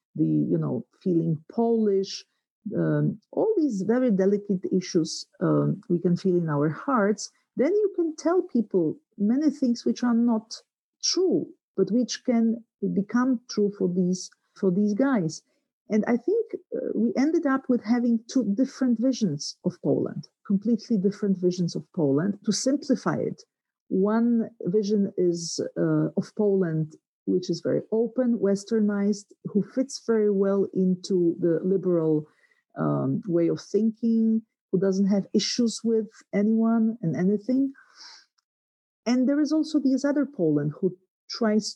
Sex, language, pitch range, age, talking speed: female, English, 185-240 Hz, 50-69, 145 wpm